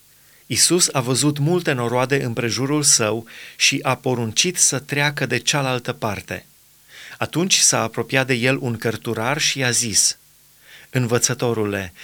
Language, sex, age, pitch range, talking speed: Romanian, male, 30-49, 115-145 Hz, 135 wpm